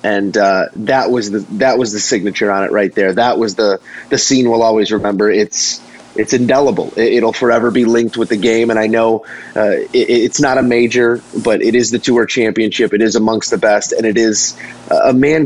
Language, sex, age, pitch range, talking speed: English, male, 30-49, 115-140 Hz, 215 wpm